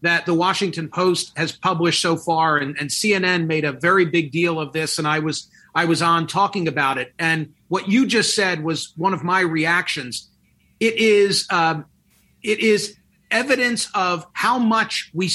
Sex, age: male, 40-59